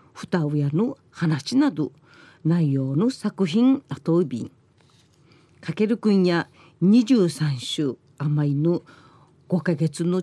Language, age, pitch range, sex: Japanese, 40-59, 150-195 Hz, female